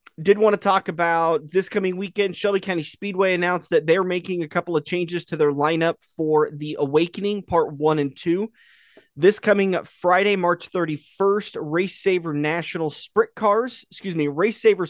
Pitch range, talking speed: 150-190 Hz, 175 wpm